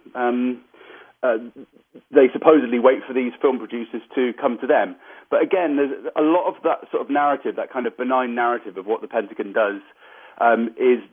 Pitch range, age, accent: 110-175 Hz, 40-59, British